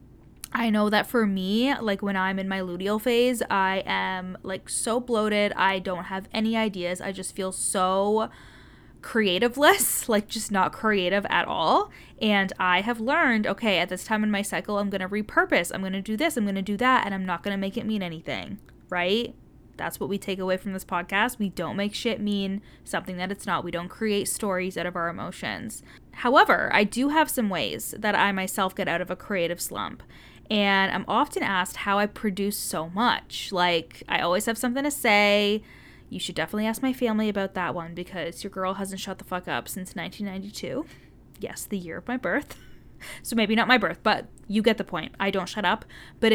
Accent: American